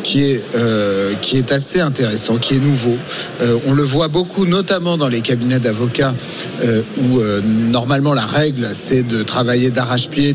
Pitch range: 130-160 Hz